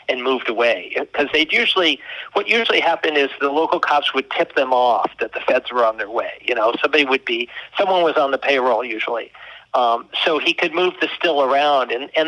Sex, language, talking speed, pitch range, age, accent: male, English, 220 wpm, 125-155 Hz, 50-69, American